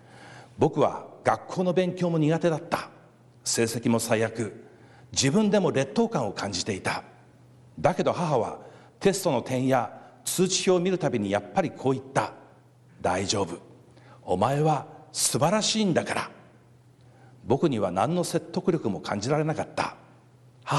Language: Japanese